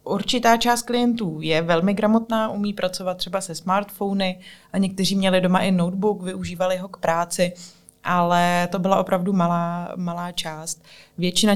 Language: Czech